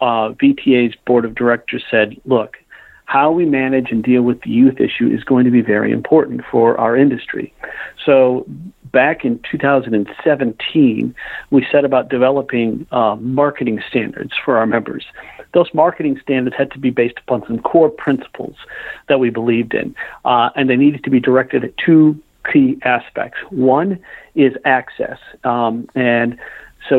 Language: English